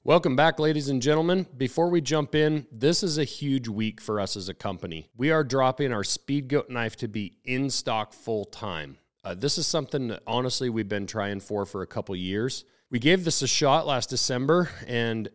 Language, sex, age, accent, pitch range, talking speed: English, male, 40-59, American, 100-125 Hz, 200 wpm